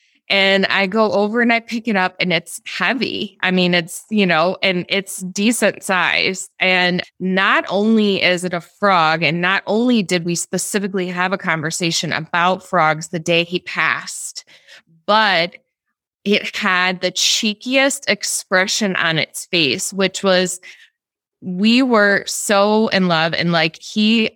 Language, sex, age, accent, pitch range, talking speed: English, female, 20-39, American, 170-205 Hz, 155 wpm